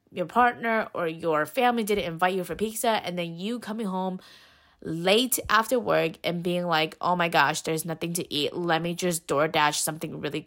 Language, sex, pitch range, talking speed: English, female, 165-205 Hz, 200 wpm